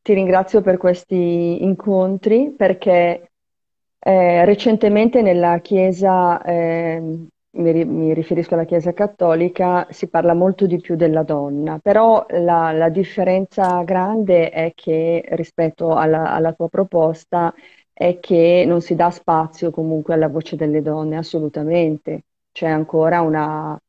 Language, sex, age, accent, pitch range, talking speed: Italian, female, 30-49, native, 160-180 Hz, 125 wpm